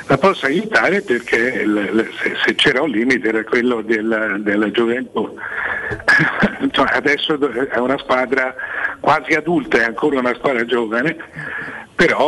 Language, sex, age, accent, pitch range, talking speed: Italian, male, 60-79, native, 115-145 Hz, 120 wpm